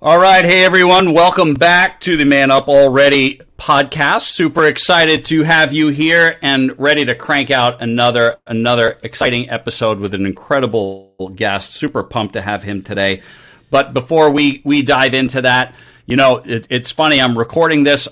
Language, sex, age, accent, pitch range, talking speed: English, male, 40-59, American, 120-140 Hz, 165 wpm